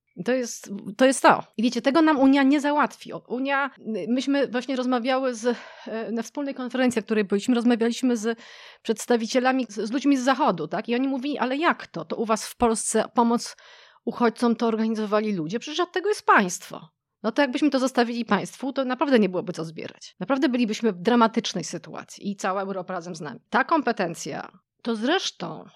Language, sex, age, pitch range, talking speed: Polish, female, 30-49, 205-255 Hz, 185 wpm